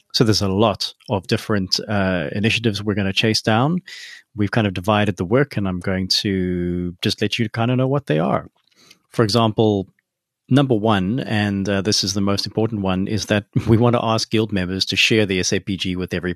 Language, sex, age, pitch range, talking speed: English, male, 30-49, 95-115 Hz, 215 wpm